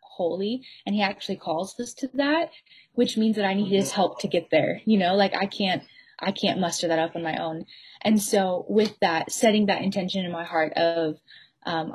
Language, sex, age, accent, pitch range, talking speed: English, female, 10-29, American, 175-210 Hz, 215 wpm